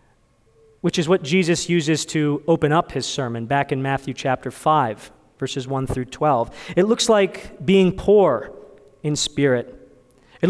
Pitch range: 135-195 Hz